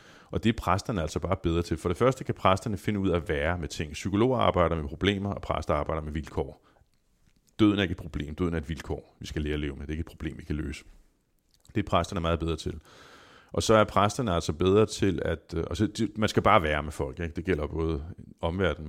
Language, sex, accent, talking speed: Danish, male, native, 240 wpm